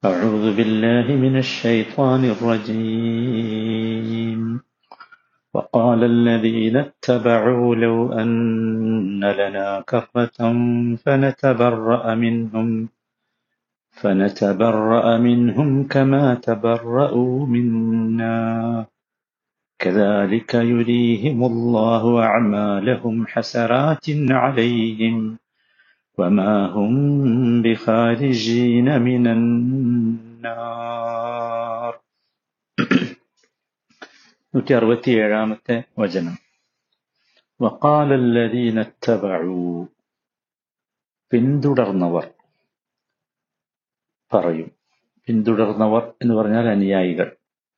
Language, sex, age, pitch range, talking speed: Malayalam, male, 50-69, 110-120 Hz, 55 wpm